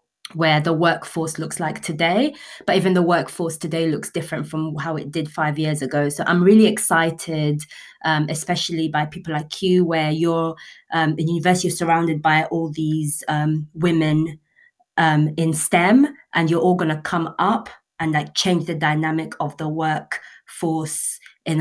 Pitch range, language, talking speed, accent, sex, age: 155-180 Hz, English, 165 wpm, British, female, 20-39